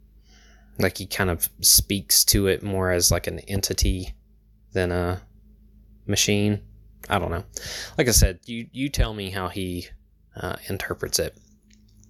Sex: male